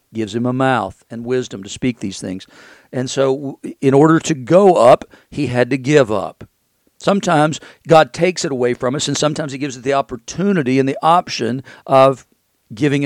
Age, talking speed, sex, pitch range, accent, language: 50-69, 190 wpm, male, 115-140 Hz, American, English